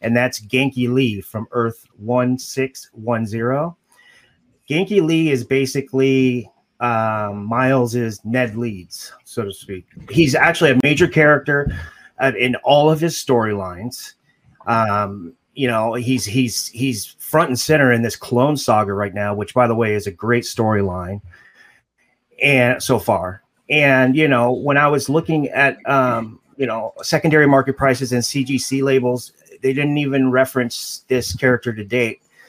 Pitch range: 115-135 Hz